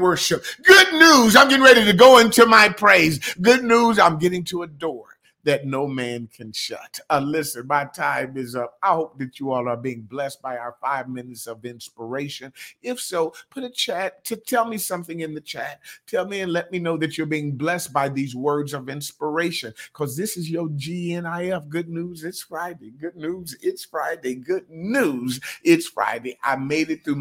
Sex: male